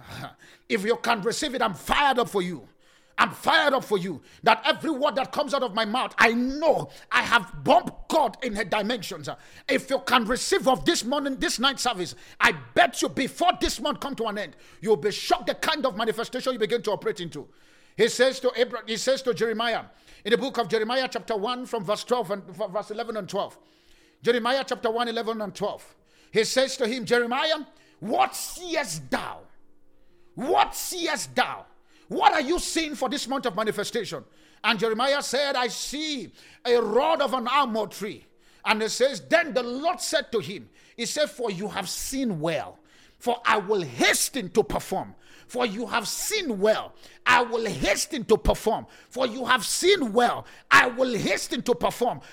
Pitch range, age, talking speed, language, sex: 225-285 Hz, 50-69, 190 wpm, English, male